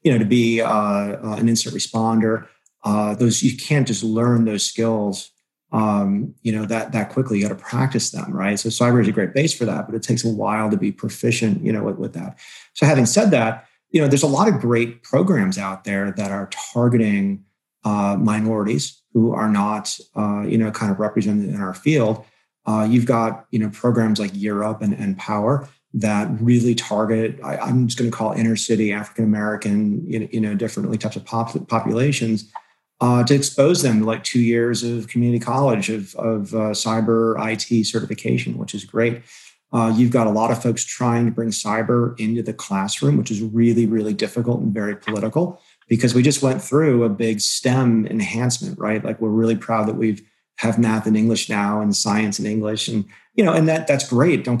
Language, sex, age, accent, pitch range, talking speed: English, male, 30-49, American, 105-120 Hz, 205 wpm